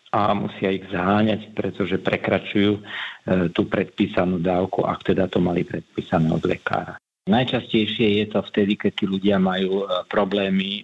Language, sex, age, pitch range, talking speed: Slovak, male, 50-69, 95-105 Hz, 140 wpm